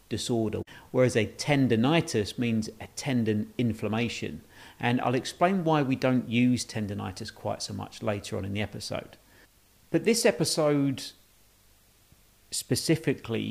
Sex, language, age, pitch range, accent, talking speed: male, English, 40-59, 105-130 Hz, British, 125 wpm